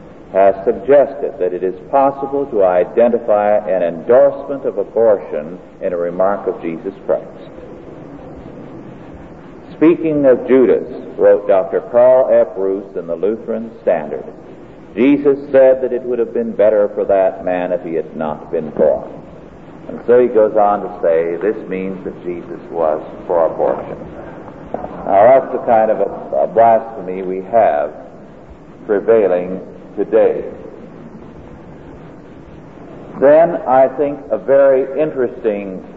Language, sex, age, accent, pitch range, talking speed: English, male, 50-69, American, 105-165 Hz, 130 wpm